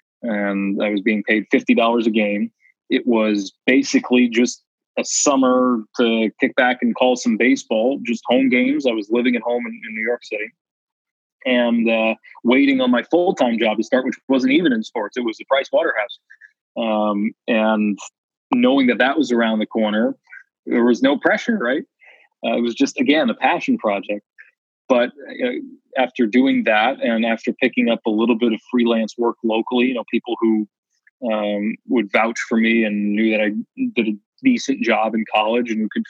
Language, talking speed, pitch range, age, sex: English, 185 wpm, 110-130 Hz, 20-39, male